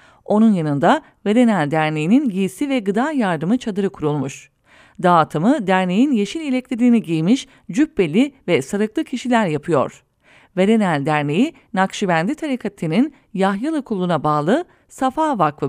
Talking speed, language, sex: 110 wpm, English, female